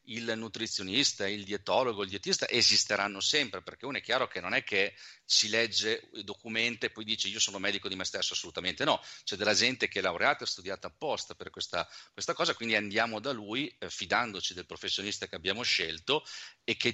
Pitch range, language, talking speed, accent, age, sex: 100-120 Hz, Italian, 200 wpm, native, 40-59, male